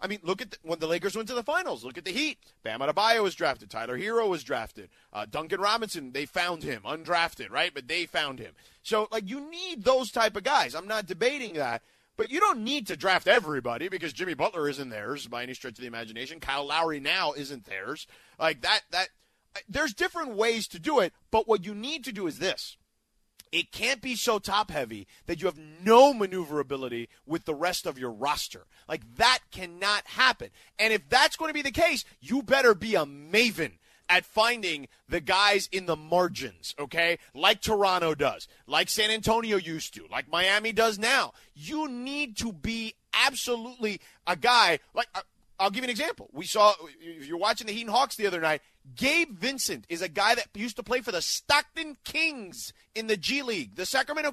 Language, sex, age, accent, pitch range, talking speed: English, male, 30-49, American, 180-260 Hz, 200 wpm